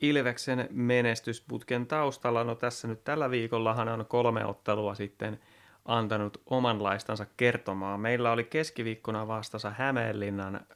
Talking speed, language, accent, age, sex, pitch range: 115 wpm, Finnish, native, 30-49, male, 105-125 Hz